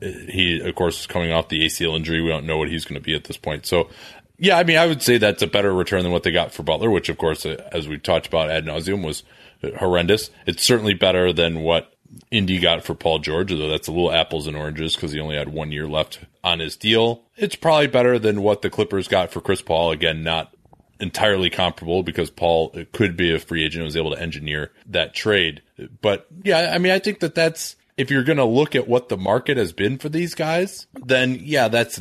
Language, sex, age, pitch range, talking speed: English, male, 20-39, 85-125 Hz, 240 wpm